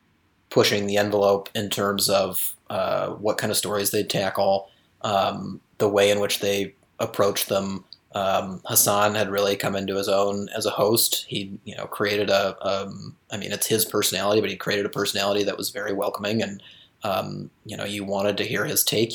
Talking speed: 195 wpm